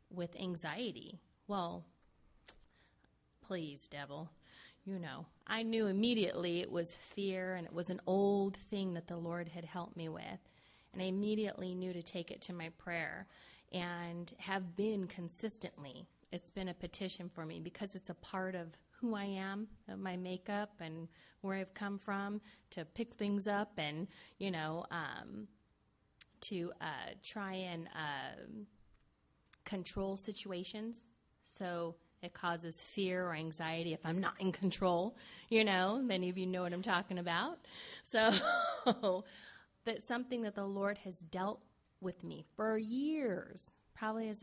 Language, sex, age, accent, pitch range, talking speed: English, female, 30-49, American, 170-205 Hz, 150 wpm